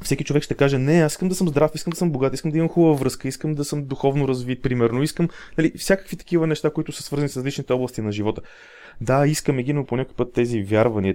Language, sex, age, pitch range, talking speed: Bulgarian, male, 20-39, 105-150 Hz, 250 wpm